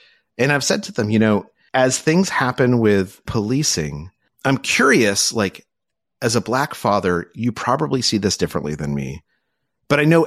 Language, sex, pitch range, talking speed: English, male, 100-150 Hz, 170 wpm